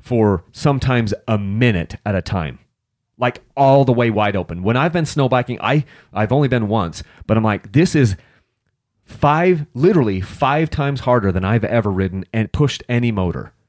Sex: male